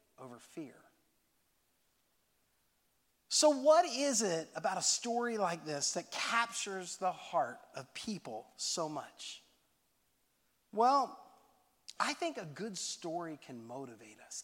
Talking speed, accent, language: 115 wpm, American, English